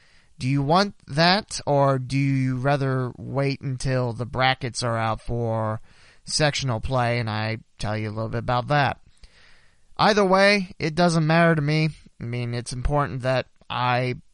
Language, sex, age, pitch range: English, male, 30-49, 110-145 Hz